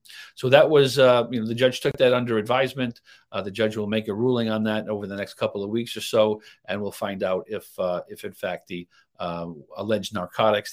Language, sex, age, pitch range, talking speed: English, male, 50-69, 100-120 Hz, 235 wpm